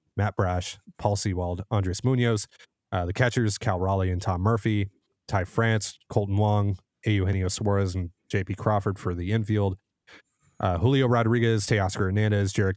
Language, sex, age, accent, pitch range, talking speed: English, male, 30-49, American, 95-110 Hz, 150 wpm